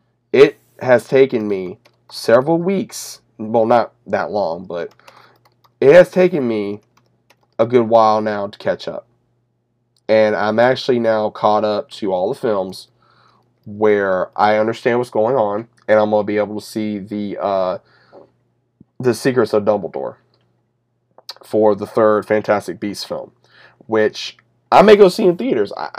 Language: English